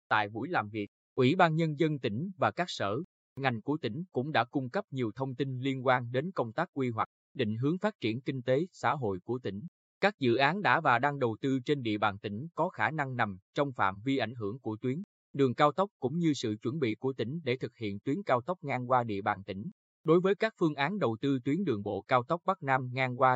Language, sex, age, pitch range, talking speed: Vietnamese, male, 20-39, 115-145 Hz, 255 wpm